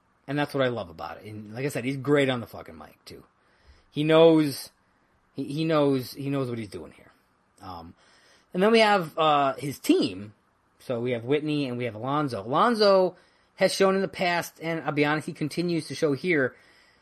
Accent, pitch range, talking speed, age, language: American, 135-185 Hz, 210 wpm, 30-49, English